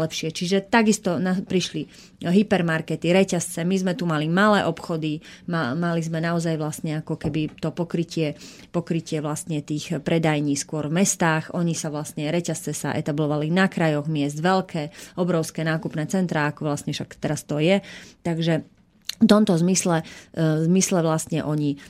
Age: 30-49